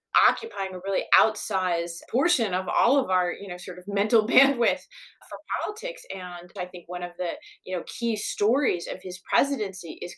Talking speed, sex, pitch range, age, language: 185 wpm, female, 185-240 Hz, 30-49, English